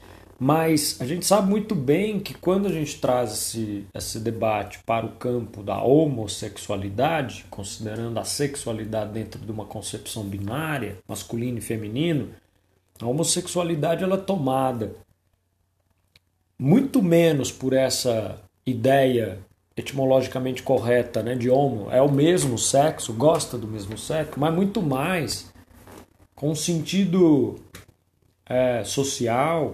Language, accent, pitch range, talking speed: Portuguese, Brazilian, 105-150 Hz, 115 wpm